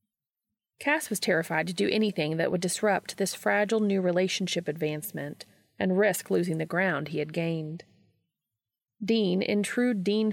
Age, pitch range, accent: 30-49, 150-205 Hz, American